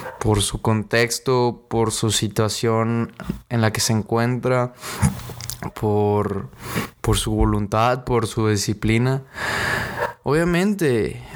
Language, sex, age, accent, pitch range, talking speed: Spanish, male, 20-39, Mexican, 115-140 Hz, 100 wpm